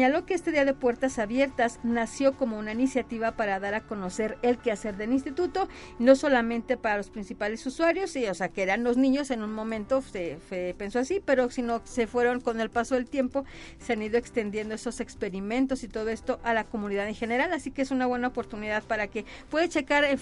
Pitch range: 225-265 Hz